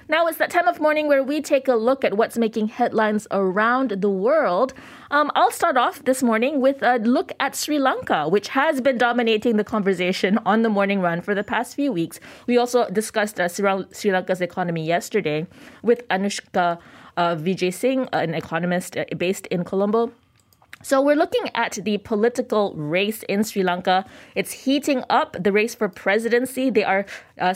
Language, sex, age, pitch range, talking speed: English, female, 20-39, 190-260 Hz, 180 wpm